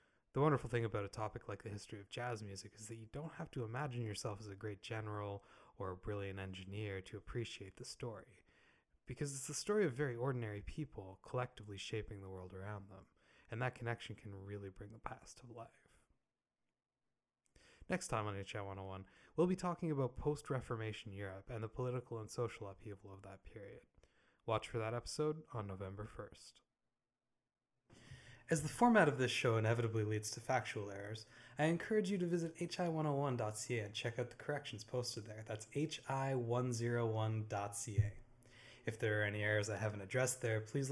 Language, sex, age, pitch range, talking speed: English, male, 20-39, 105-135 Hz, 175 wpm